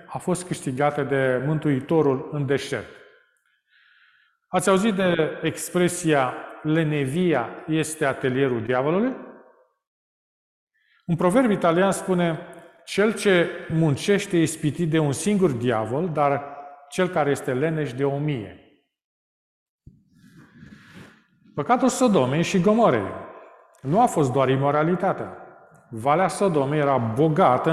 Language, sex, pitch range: Romanian, male, 140-180 Hz